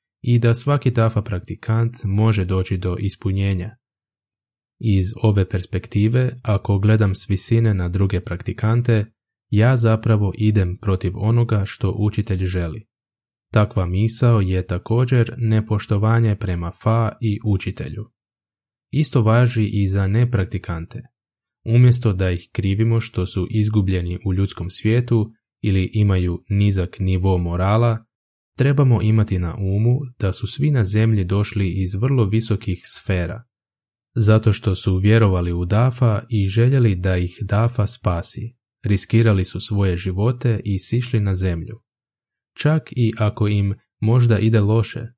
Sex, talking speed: male, 130 wpm